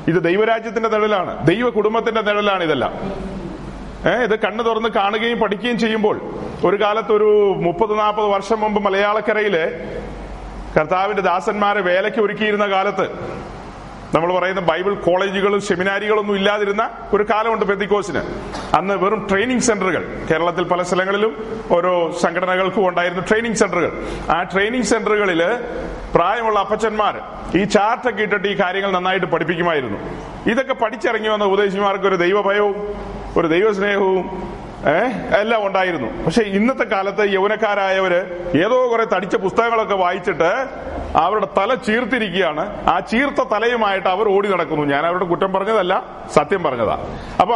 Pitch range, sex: 190-225 Hz, male